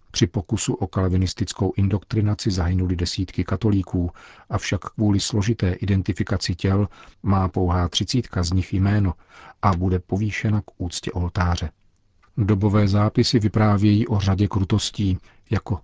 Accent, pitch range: native, 90-105 Hz